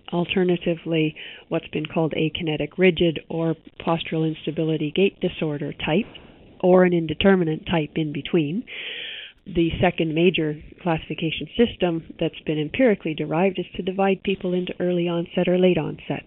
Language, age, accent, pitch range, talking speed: English, 40-59, American, 160-180 Hz, 140 wpm